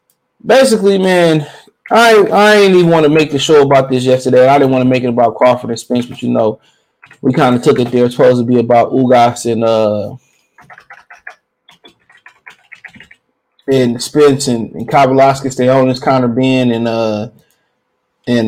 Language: English